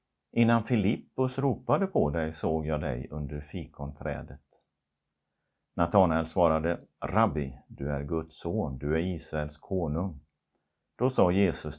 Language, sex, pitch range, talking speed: Swedish, male, 70-95 Hz, 120 wpm